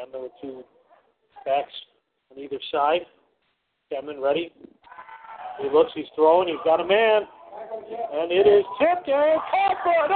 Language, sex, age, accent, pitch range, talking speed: English, male, 40-59, American, 165-275 Hz, 160 wpm